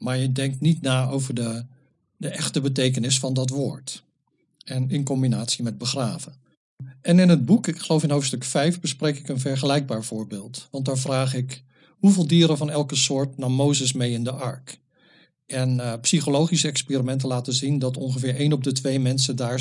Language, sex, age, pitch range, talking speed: Dutch, male, 50-69, 130-150 Hz, 185 wpm